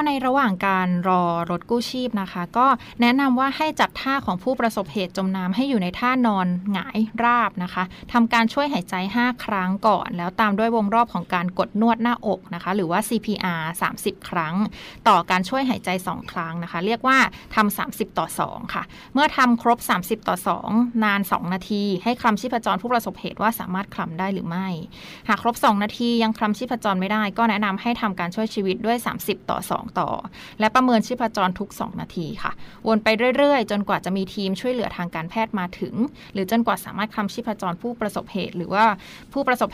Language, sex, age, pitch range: Thai, female, 20-39, 185-235 Hz